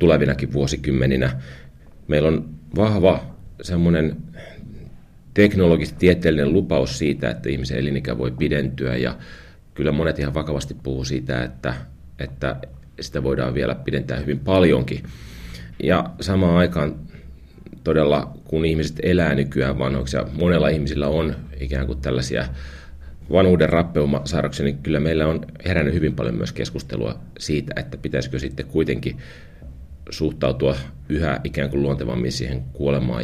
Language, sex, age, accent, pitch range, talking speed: Finnish, male, 30-49, native, 65-80 Hz, 125 wpm